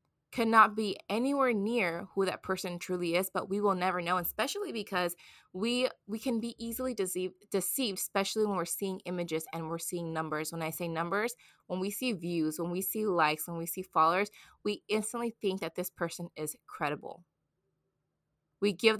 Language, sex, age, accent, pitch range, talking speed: English, female, 20-39, American, 170-220 Hz, 185 wpm